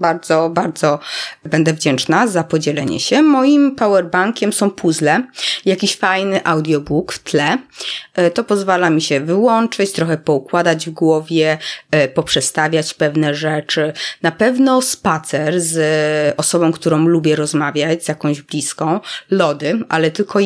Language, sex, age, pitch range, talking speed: Polish, female, 20-39, 160-195 Hz, 125 wpm